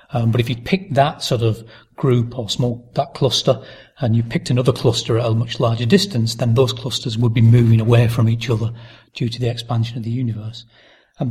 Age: 40-59